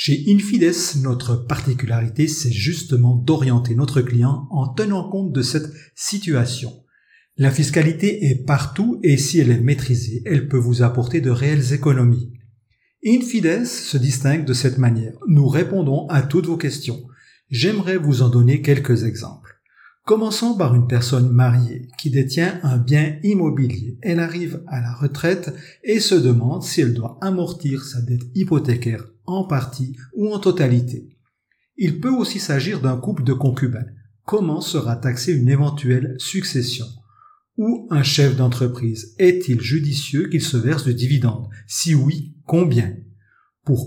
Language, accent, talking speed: French, French, 150 wpm